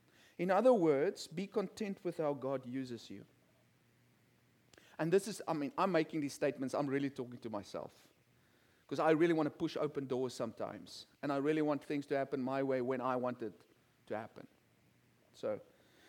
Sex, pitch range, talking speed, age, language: male, 140-185 Hz, 185 wpm, 40-59, English